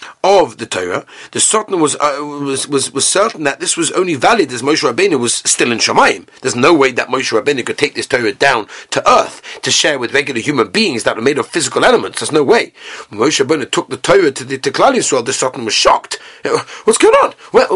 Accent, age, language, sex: British, 40-59, English, male